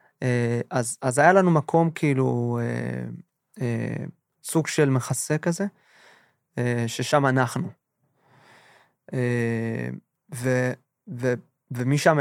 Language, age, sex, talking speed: Hebrew, 20-39, male, 85 wpm